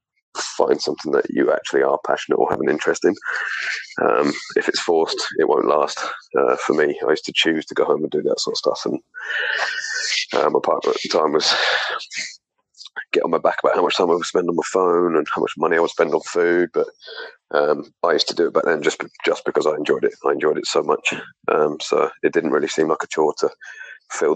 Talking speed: 240 wpm